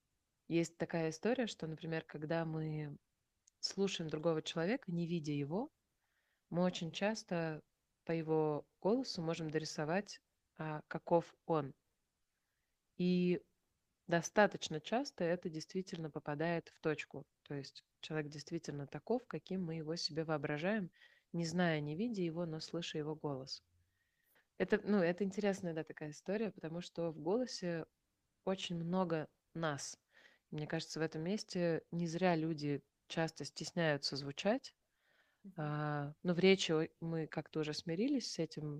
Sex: female